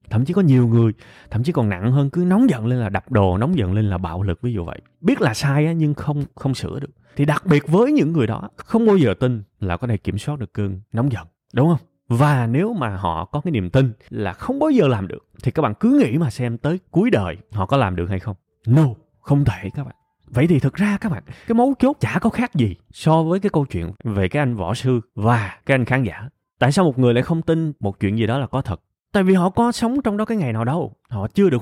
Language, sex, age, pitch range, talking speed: Vietnamese, male, 20-39, 105-170 Hz, 280 wpm